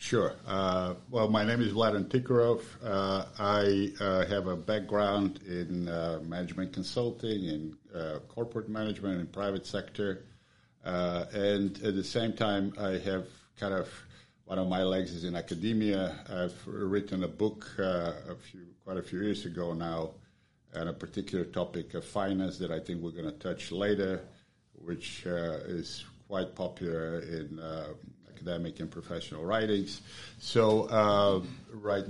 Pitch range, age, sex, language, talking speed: 90-105 Hz, 50-69, male, English, 155 wpm